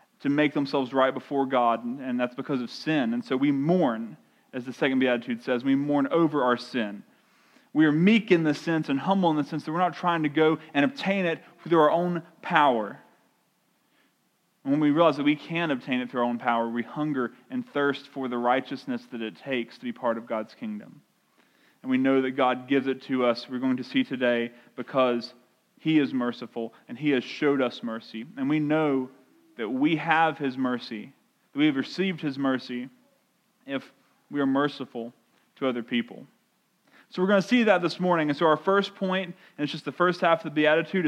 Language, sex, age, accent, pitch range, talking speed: English, male, 30-49, American, 130-175 Hz, 210 wpm